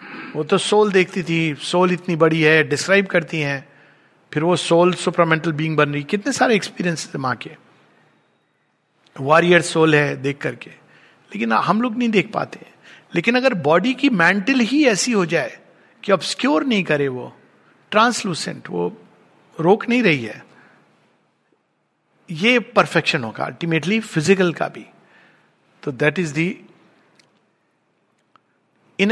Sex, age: male, 50-69